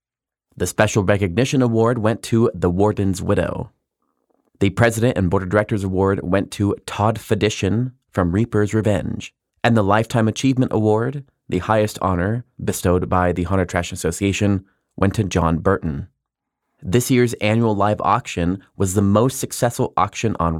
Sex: male